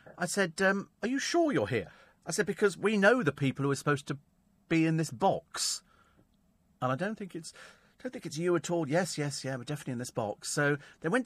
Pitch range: 130-170 Hz